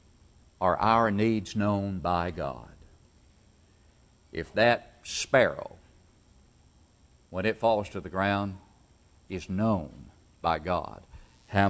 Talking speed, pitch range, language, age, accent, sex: 105 wpm, 85-130 Hz, English, 60-79, American, male